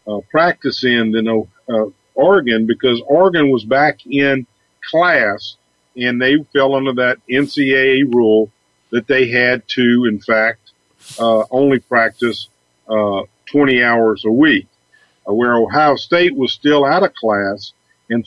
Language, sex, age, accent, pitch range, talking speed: English, male, 50-69, American, 110-135 Hz, 145 wpm